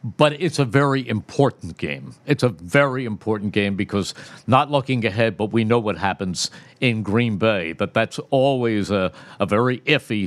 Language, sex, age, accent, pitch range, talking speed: English, male, 50-69, American, 110-140 Hz, 175 wpm